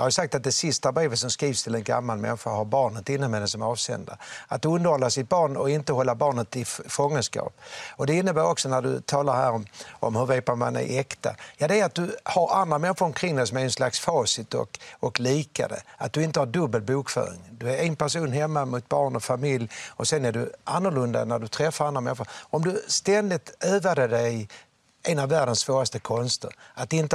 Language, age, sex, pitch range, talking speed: English, 60-79, male, 120-160 Hz, 225 wpm